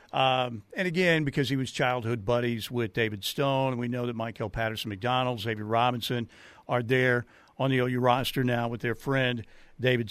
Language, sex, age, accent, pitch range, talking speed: English, male, 50-69, American, 120-165 Hz, 180 wpm